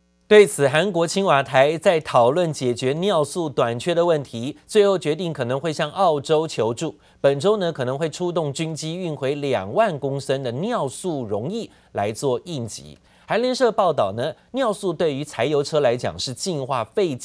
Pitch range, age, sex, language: 125-175 Hz, 30-49, male, Chinese